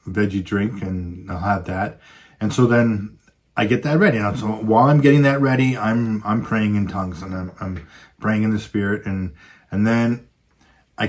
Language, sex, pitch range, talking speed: English, male, 100-120 Hz, 195 wpm